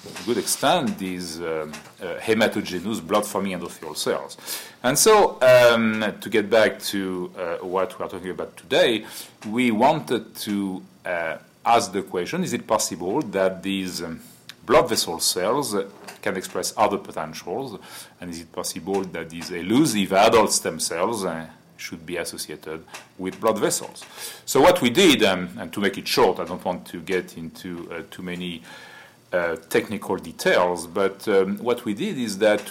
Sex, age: male, 40-59